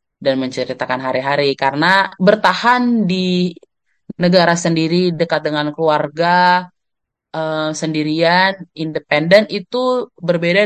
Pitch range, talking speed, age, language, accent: 135-160 Hz, 90 wpm, 20-39, Indonesian, native